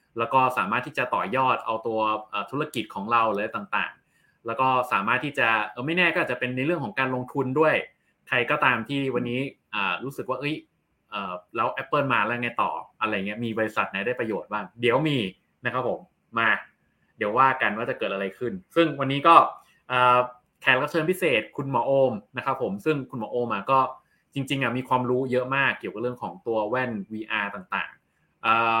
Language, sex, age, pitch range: Thai, male, 20-39, 120-150 Hz